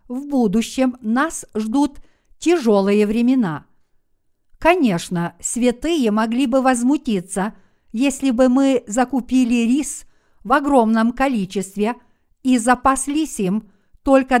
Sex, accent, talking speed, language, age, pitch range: female, native, 95 wpm, Russian, 50-69, 220-270 Hz